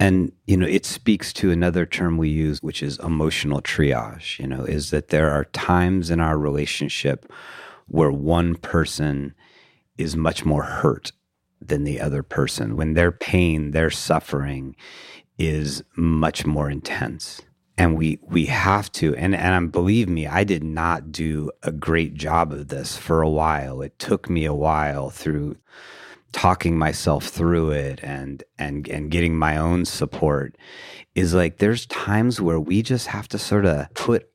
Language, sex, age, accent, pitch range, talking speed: English, male, 40-59, American, 75-90 Hz, 165 wpm